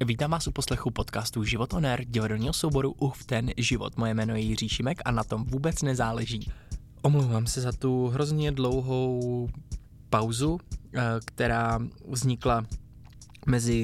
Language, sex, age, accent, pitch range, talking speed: Czech, male, 20-39, native, 110-125 Hz, 140 wpm